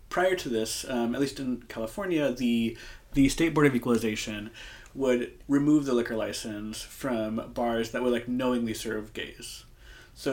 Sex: male